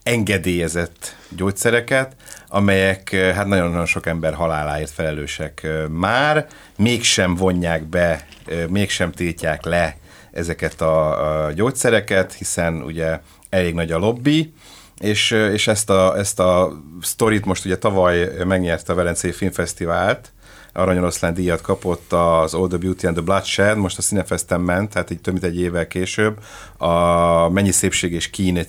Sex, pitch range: male, 85-100 Hz